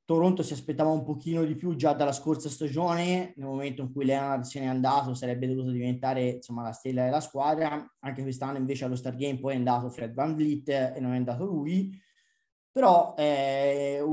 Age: 20-39